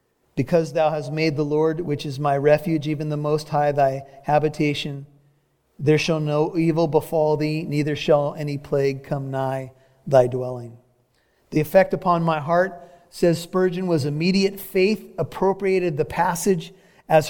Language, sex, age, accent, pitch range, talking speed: English, male, 40-59, American, 145-185 Hz, 155 wpm